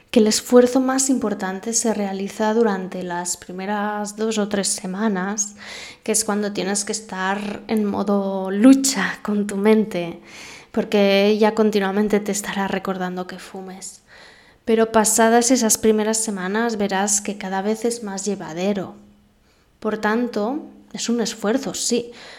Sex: female